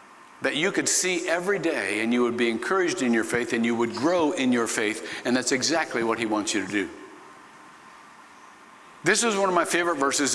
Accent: American